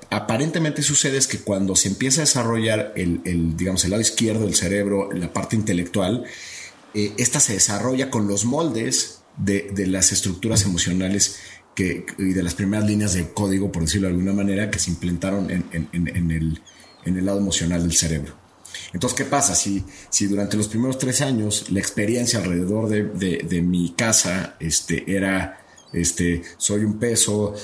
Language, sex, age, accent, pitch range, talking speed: Spanish, male, 40-59, Mexican, 90-110 Hz, 180 wpm